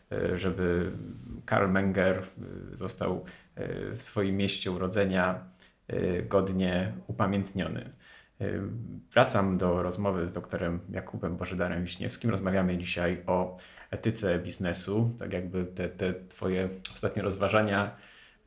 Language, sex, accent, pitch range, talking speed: Polish, male, native, 95-105 Hz, 95 wpm